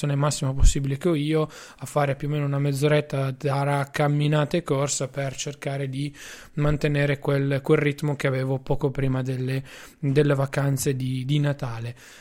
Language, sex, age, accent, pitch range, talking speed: Italian, male, 20-39, native, 145-175 Hz, 160 wpm